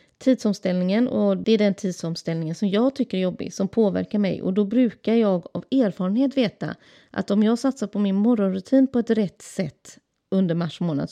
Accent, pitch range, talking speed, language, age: Swedish, 170-220 Hz, 190 wpm, English, 30-49